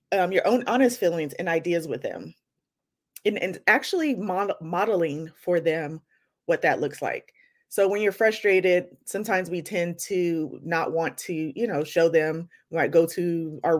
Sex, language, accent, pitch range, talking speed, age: female, English, American, 170-235 Hz, 175 wpm, 30-49